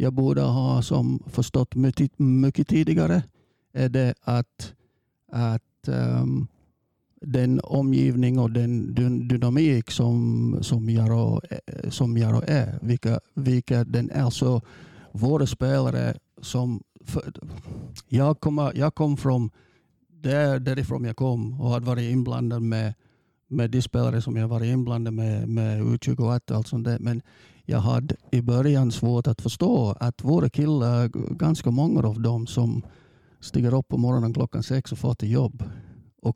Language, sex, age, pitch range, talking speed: Swedish, male, 50-69, 115-130 Hz, 145 wpm